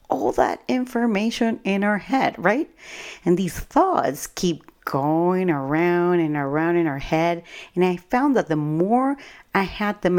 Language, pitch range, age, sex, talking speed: English, 150-200 Hz, 40-59, female, 160 wpm